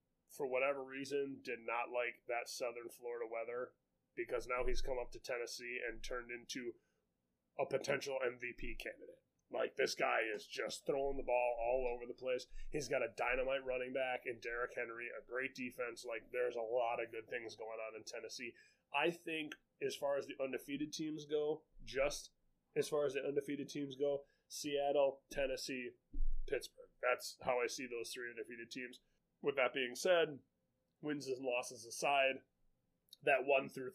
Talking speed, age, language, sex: 175 wpm, 20-39, English, male